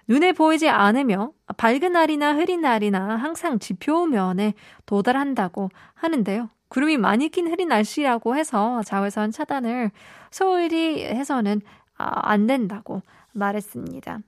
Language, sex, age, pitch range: Korean, female, 20-39, 200-255 Hz